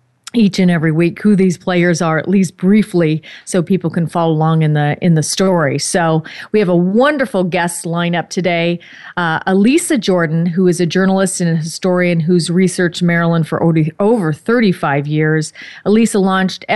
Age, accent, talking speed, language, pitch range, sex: 40-59, American, 170 wpm, English, 165-195 Hz, female